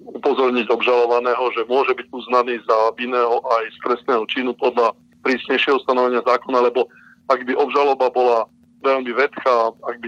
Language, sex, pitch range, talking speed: Slovak, male, 115-125 Hz, 150 wpm